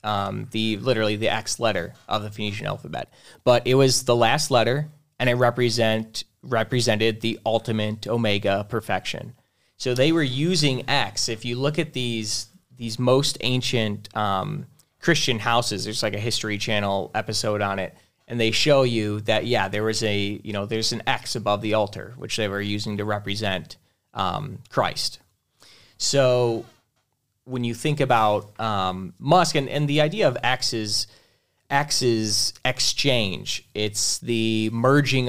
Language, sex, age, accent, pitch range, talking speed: English, male, 20-39, American, 110-130 Hz, 160 wpm